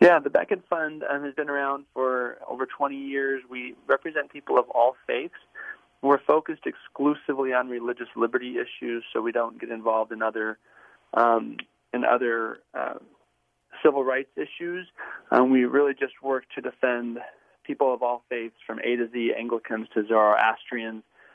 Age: 30-49